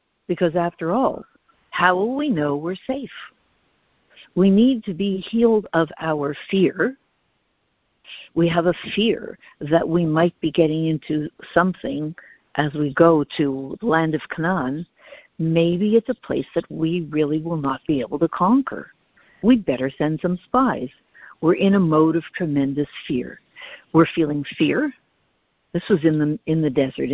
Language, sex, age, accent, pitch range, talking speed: English, female, 60-79, American, 155-225 Hz, 155 wpm